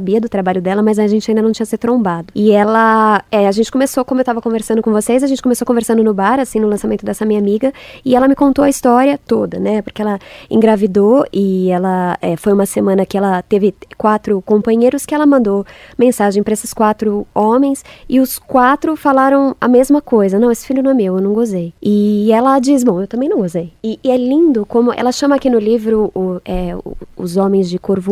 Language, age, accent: Portuguese, 20-39, Brazilian